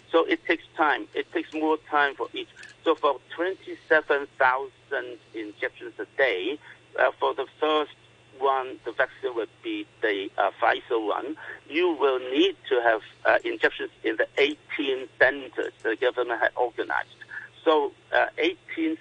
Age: 60-79